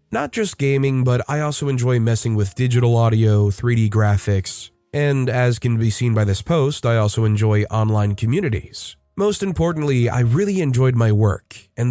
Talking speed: 170 wpm